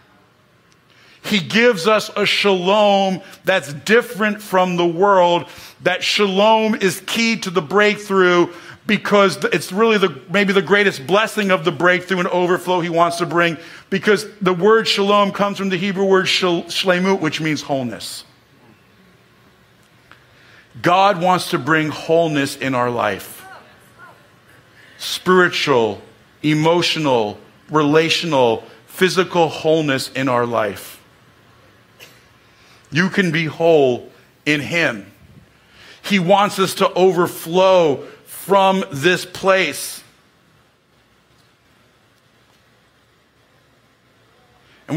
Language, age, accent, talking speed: English, 50-69, American, 105 wpm